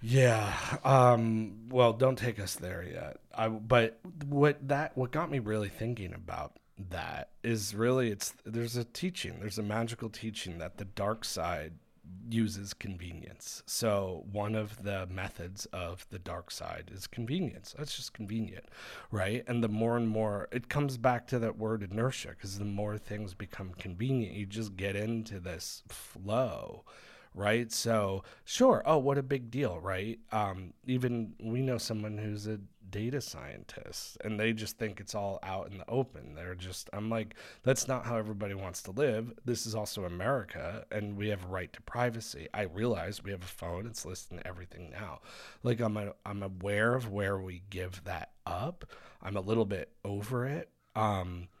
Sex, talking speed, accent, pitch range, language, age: male, 180 wpm, American, 100-120 Hz, English, 40-59